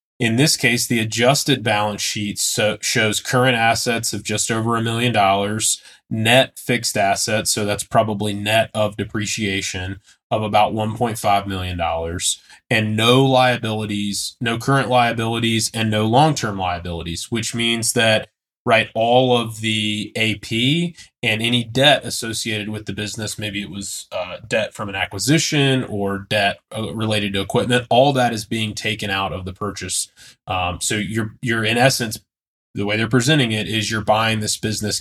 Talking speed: 160 wpm